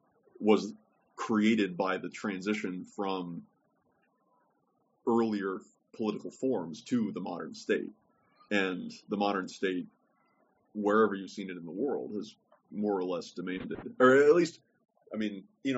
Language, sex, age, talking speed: English, male, 30-49, 135 wpm